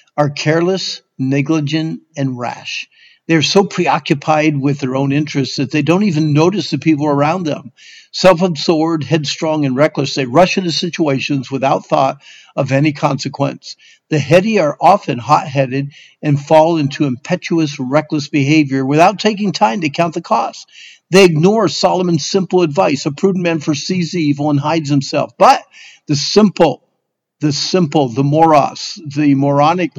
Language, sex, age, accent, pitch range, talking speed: English, male, 50-69, American, 140-175 Hz, 150 wpm